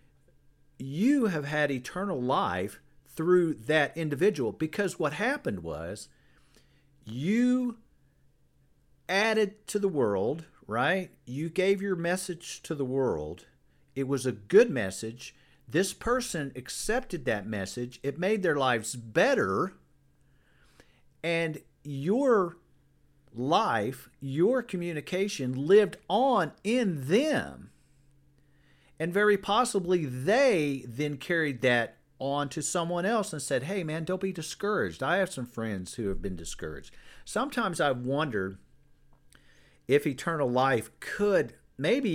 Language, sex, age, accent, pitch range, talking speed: English, male, 50-69, American, 130-185 Hz, 120 wpm